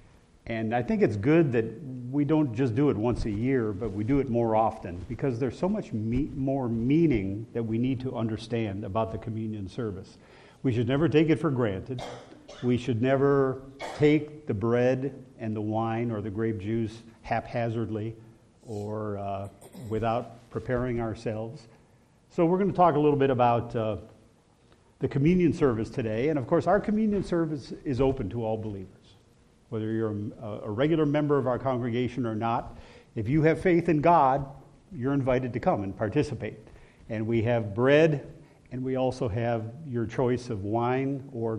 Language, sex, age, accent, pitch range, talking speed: English, male, 50-69, American, 110-140 Hz, 175 wpm